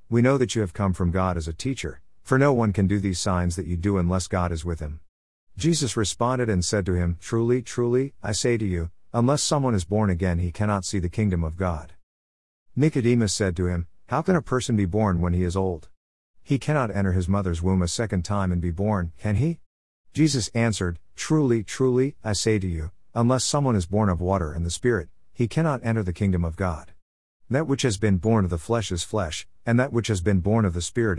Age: 50-69